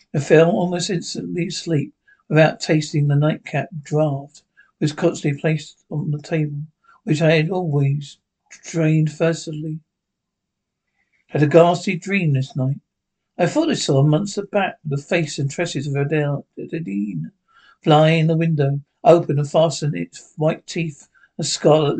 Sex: male